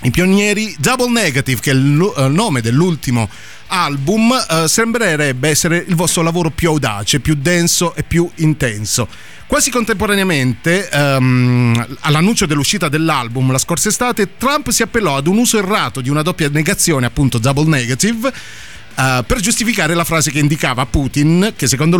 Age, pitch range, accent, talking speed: 30-49, 130-180 Hz, native, 145 wpm